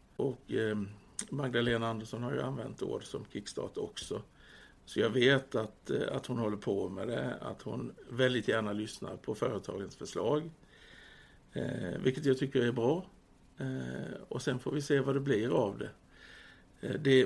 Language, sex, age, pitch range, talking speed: English, male, 60-79, 115-150 Hz, 155 wpm